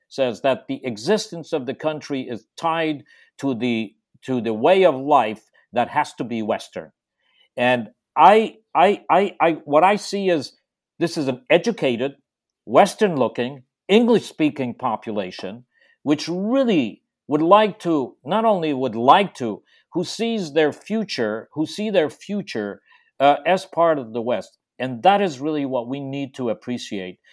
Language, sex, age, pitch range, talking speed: English, male, 50-69, 125-185 Hz, 160 wpm